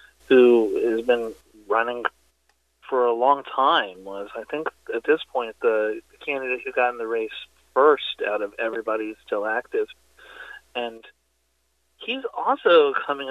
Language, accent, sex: English, American, male